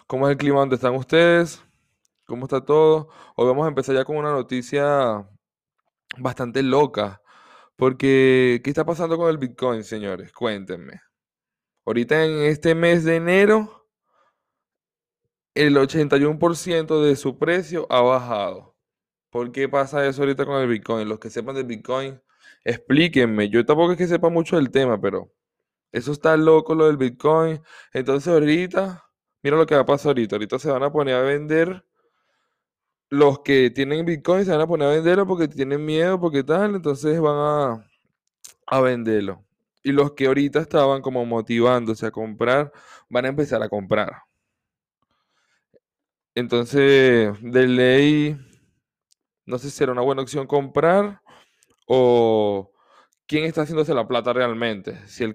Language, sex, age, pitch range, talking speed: Spanish, male, 10-29, 125-155 Hz, 155 wpm